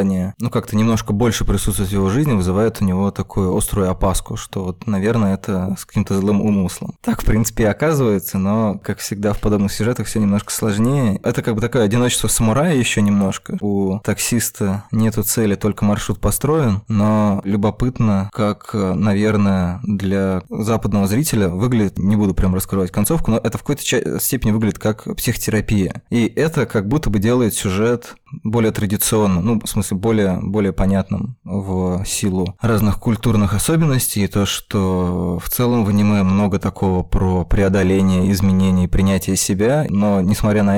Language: Russian